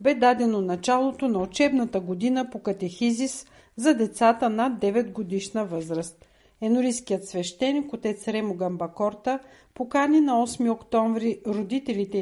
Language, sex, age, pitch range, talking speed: Bulgarian, female, 50-69, 195-255 Hz, 120 wpm